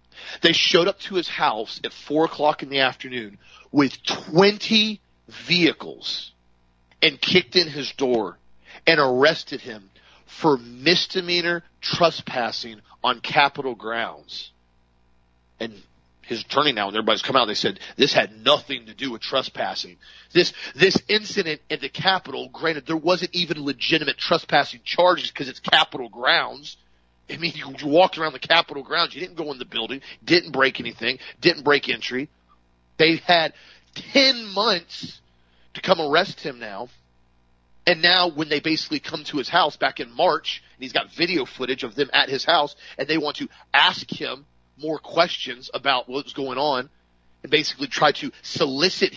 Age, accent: 40-59, American